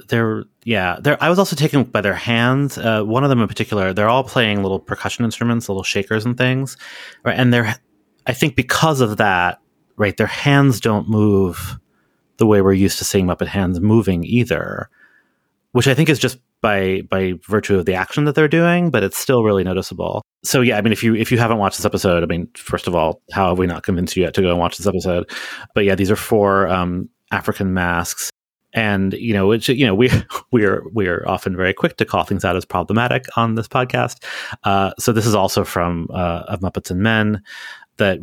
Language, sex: English, male